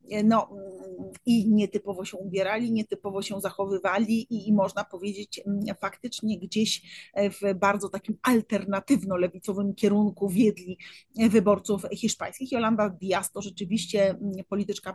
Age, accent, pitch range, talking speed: 30-49, native, 190-220 Hz, 110 wpm